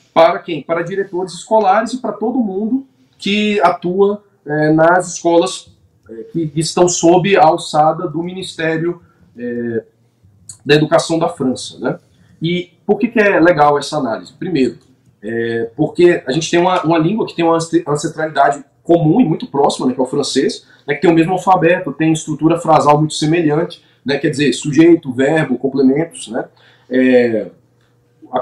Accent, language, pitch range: Brazilian, Portuguese, 140-185 Hz